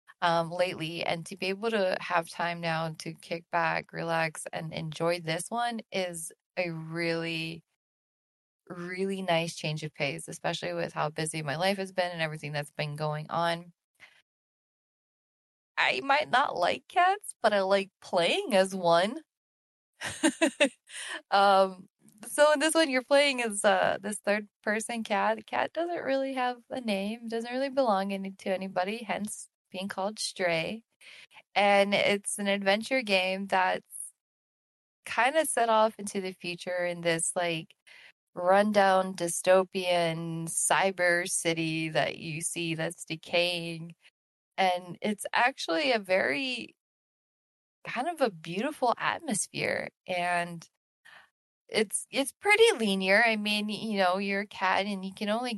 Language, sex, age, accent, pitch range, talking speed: English, female, 20-39, American, 170-210 Hz, 140 wpm